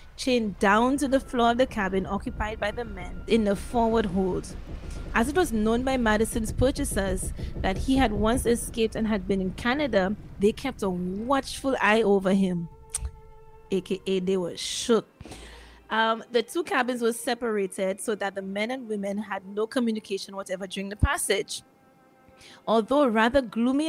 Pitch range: 200-255 Hz